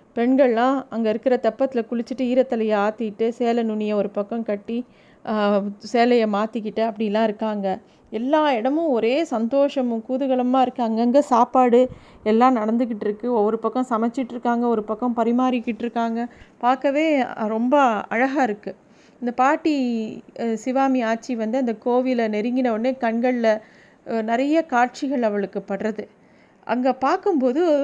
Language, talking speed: Tamil, 115 wpm